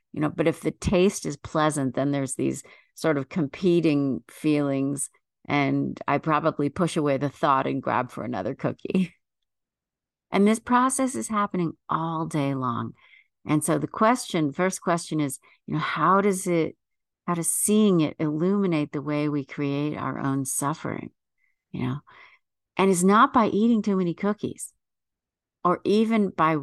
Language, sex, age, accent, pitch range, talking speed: English, female, 50-69, American, 145-205 Hz, 160 wpm